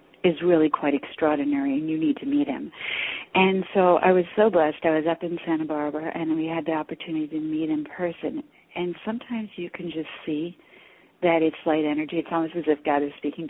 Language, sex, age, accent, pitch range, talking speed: English, female, 40-59, American, 155-185 Hz, 220 wpm